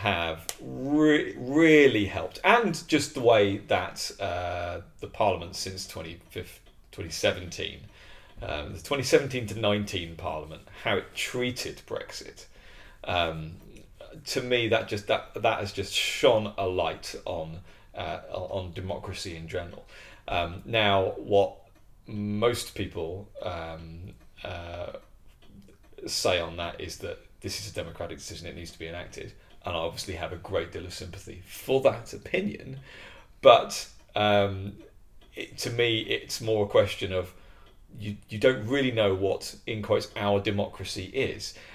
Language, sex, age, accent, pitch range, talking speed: English, male, 30-49, British, 95-125 Hz, 140 wpm